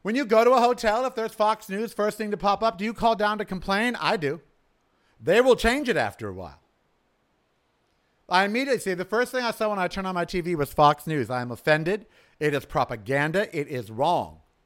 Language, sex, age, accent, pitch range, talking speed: English, male, 50-69, American, 145-245 Hz, 230 wpm